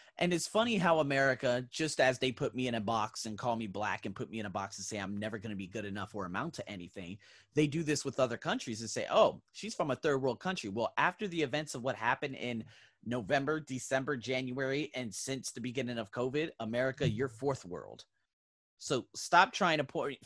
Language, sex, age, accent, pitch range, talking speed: English, male, 30-49, American, 105-155 Hz, 230 wpm